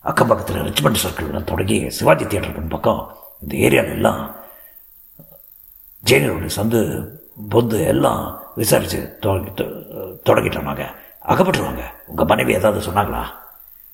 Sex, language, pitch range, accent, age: male, Tamil, 95-115 Hz, native, 50-69